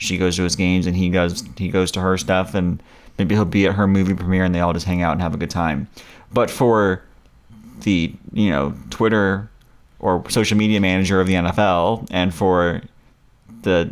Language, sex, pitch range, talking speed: English, male, 95-120 Hz, 205 wpm